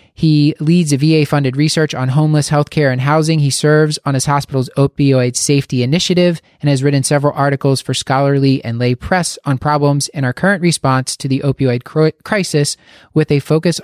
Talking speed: 180 wpm